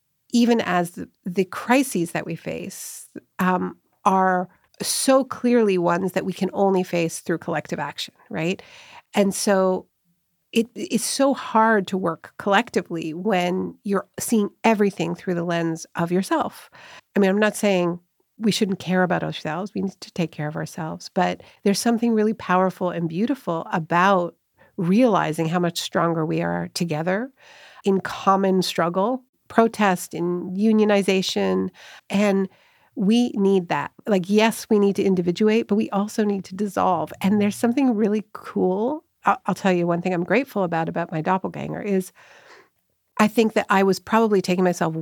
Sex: female